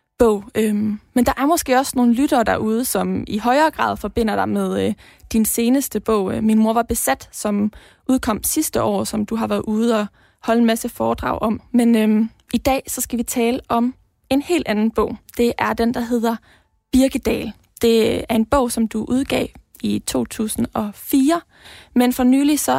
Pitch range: 220-245 Hz